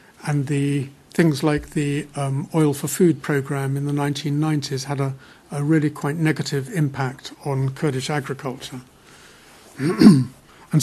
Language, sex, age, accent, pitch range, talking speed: English, male, 60-79, British, 140-175 Hz, 135 wpm